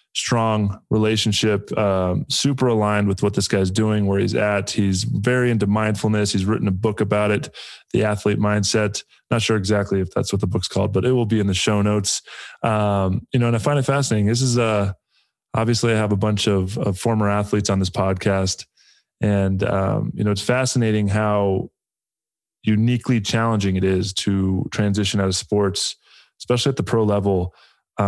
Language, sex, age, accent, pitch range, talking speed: English, male, 20-39, American, 95-110 Hz, 190 wpm